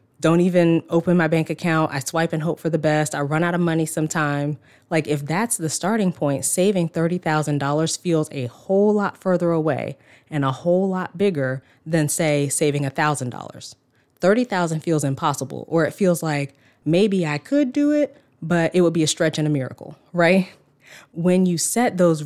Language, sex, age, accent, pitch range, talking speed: English, female, 20-39, American, 145-175 Hz, 185 wpm